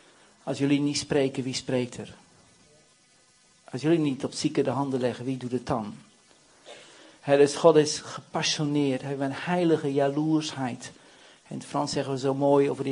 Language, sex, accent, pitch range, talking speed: Dutch, male, Dutch, 130-150 Hz, 170 wpm